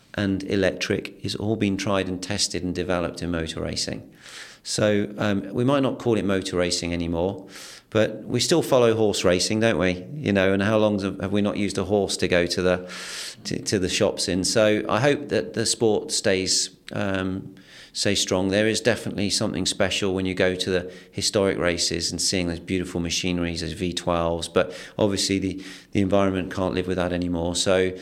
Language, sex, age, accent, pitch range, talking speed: English, male, 40-59, British, 90-100 Hz, 195 wpm